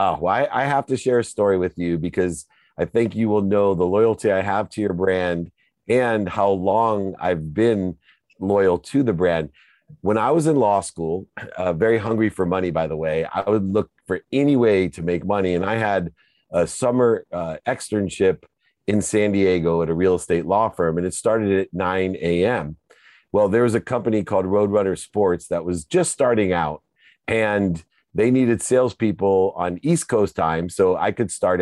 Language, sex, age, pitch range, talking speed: English, male, 40-59, 90-110 Hz, 190 wpm